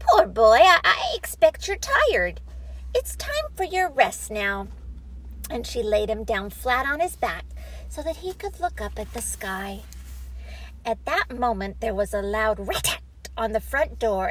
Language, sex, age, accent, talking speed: English, female, 50-69, American, 180 wpm